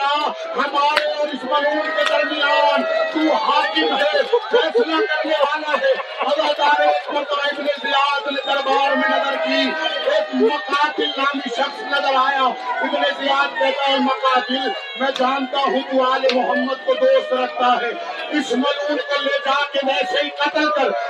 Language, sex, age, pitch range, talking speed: Urdu, male, 50-69, 270-305 Hz, 45 wpm